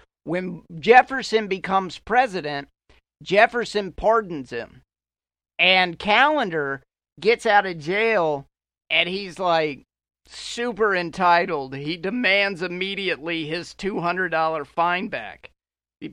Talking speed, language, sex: 95 wpm, English, male